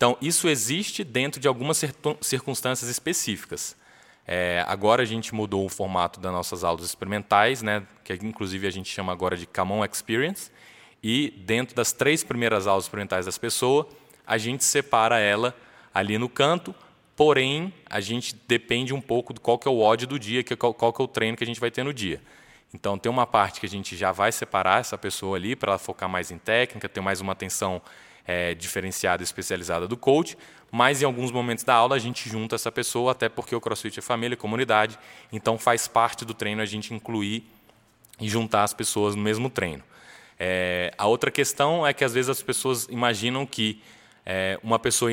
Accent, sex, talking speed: Brazilian, male, 200 wpm